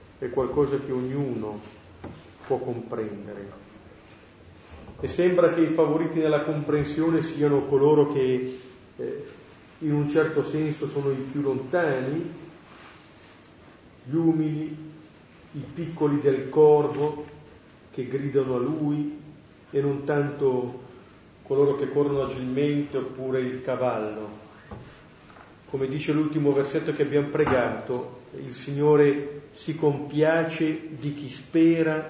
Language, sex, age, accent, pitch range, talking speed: Italian, male, 40-59, native, 125-155 Hz, 110 wpm